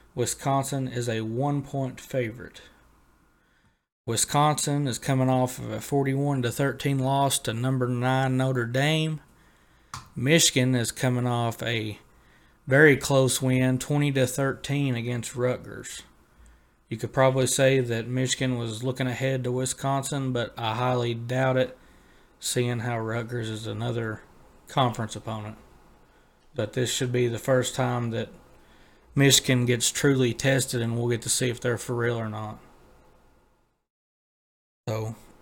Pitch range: 115-130 Hz